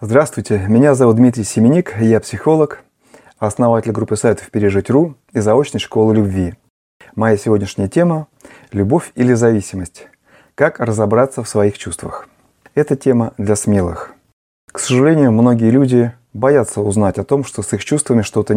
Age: 30-49